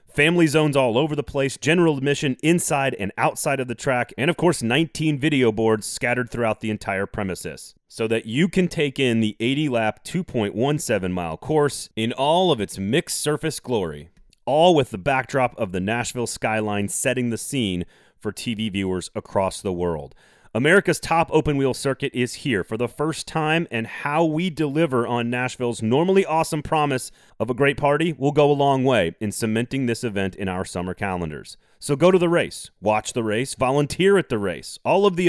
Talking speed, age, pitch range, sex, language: 190 wpm, 30-49, 110-150 Hz, male, English